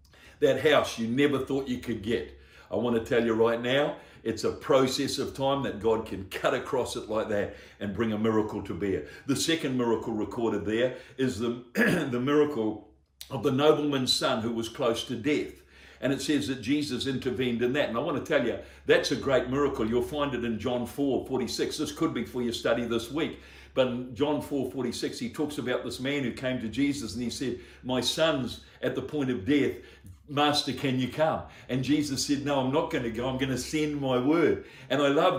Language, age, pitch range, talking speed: English, 60-79, 120-145 Hz, 220 wpm